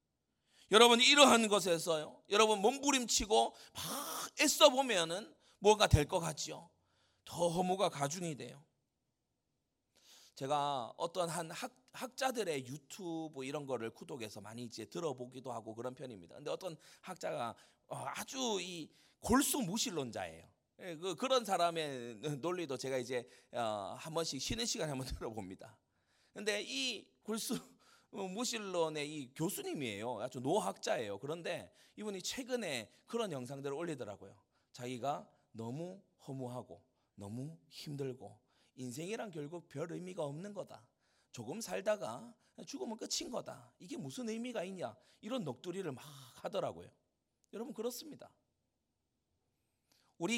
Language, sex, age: Korean, male, 30-49